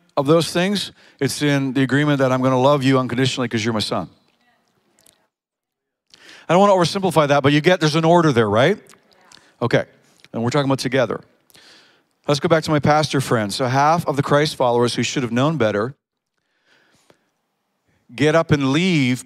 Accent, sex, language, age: American, male, English, 50-69